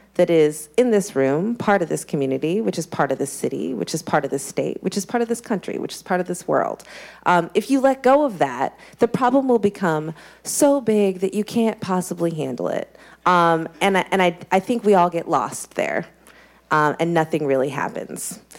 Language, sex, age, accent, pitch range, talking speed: English, female, 30-49, American, 155-200 Hz, 225 wpm